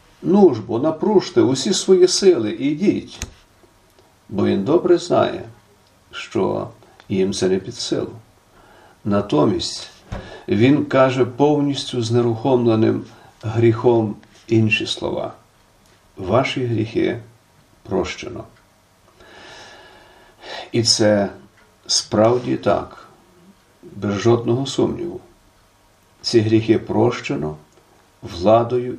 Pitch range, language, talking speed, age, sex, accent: 105-125 Hz, Ukrainian, 85 wpm, 50-69, male, native